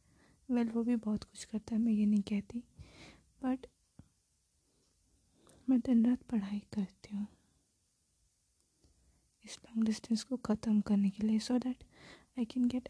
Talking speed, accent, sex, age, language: 145 wpm, native, female, 20-39, Hindi